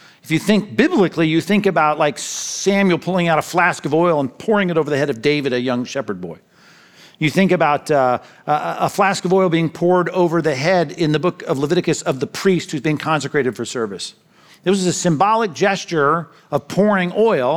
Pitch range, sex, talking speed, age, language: 150-190 Hz, male, 210 wpm, 50-69, English